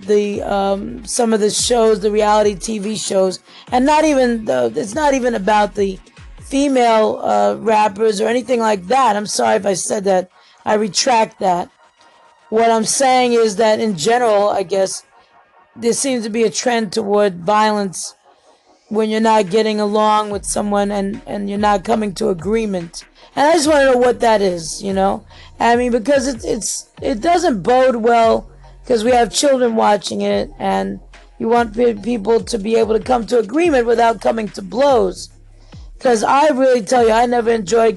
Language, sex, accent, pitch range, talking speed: English, female, American, 205-240 Hz, 180 wpm